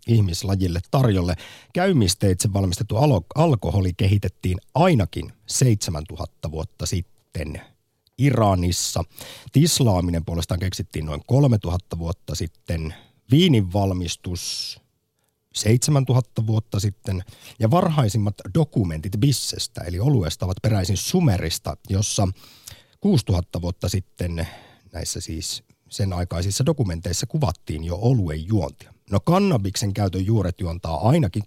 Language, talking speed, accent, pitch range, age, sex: Finnish, 95 wpm, native, 90-120 Hz, 50-69, male